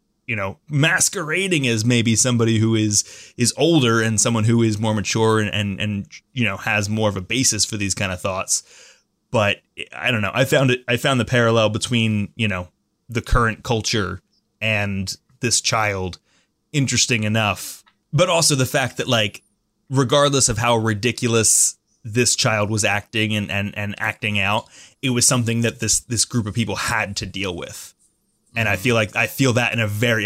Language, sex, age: English, male, 20-39